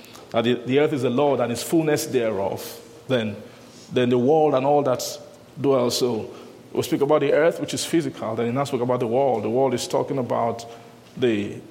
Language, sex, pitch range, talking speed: English, male, 115-145 Hz, 205 wpm